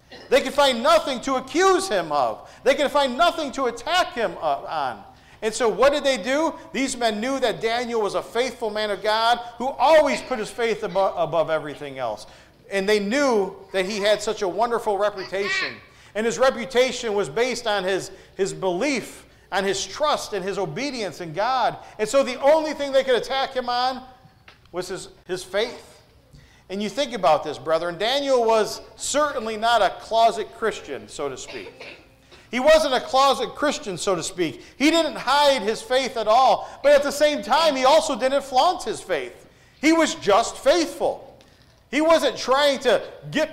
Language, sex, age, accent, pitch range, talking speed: English, male, 40-59, American, 205-285 Hz, 185 wpm